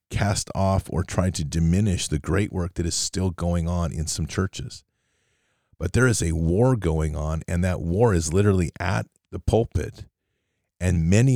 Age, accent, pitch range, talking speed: 40-59, American, 85-105 Hz, 180 wpm